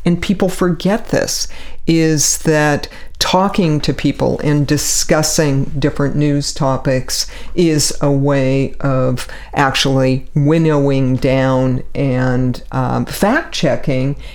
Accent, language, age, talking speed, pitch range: American, English, 50-69, 100 wpm, 135-160 Hz